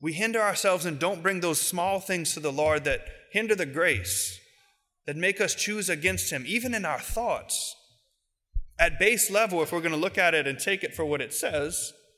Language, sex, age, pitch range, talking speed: English, male, 30-49, 150-205 Hz, 210 wpm